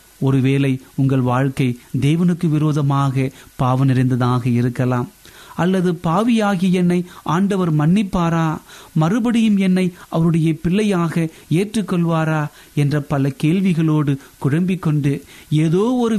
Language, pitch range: Tamil, 135-175 Hz